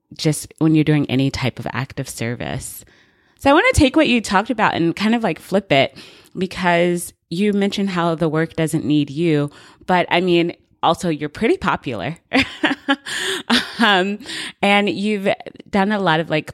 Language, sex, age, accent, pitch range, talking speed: English, female, 30-49, American, 145-195 Hz, 175 wpm